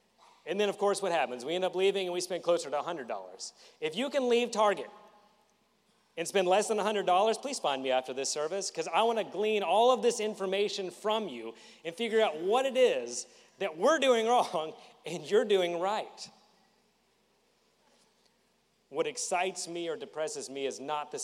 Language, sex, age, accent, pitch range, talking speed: English, male, 30-49, American, 170-225 Hz, 185 wpm